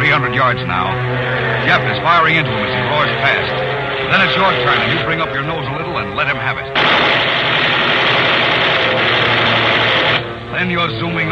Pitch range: 120-145 Hz